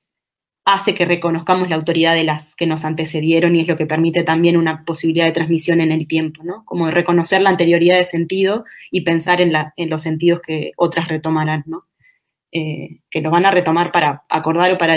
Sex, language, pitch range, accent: female, Spanish, 160-180 Hz, Argentinian